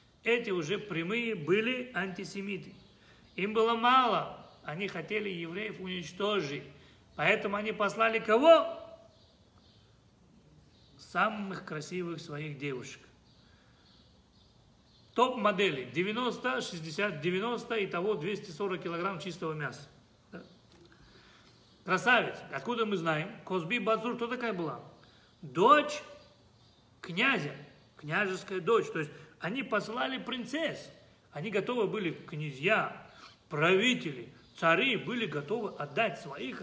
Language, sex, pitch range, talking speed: Russian, male, 150-220 Hz, 95 wpm